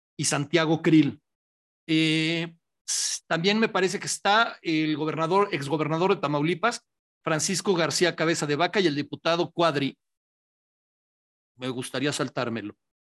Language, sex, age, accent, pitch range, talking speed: Spanish, male, 40-59, Mexican, 155-195 Hz, 120 wpm